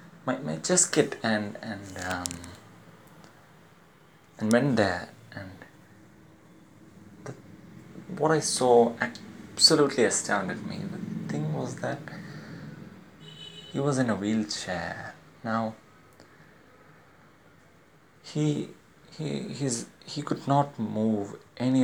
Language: English